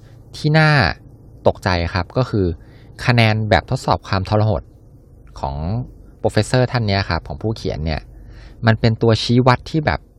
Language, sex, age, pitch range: Thai, male, 20-39, 85-120 Hz